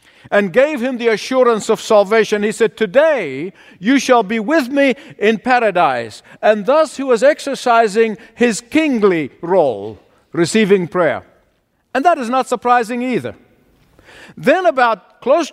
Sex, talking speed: male, 140 wpm